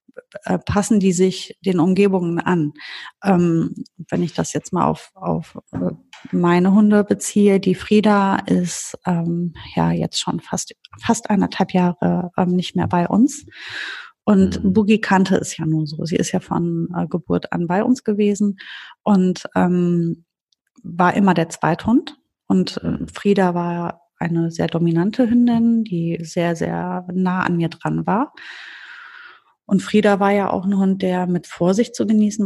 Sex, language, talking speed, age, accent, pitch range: female, German, 155 wpm, 30-49, German, 170-205 Hz